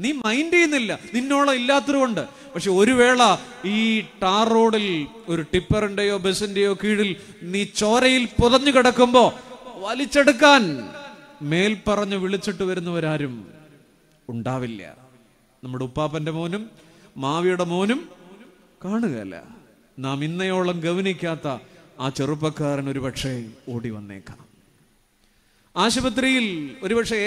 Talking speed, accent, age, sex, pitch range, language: 85 wpm, native, 30-49, male, 160-240 Hz, Malayalam